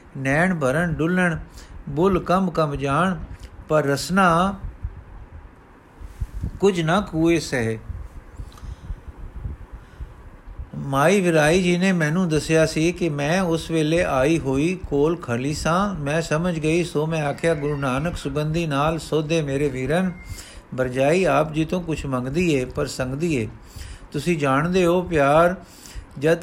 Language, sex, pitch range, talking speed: Punjabi, male, 140-175 Hz, 125 wpm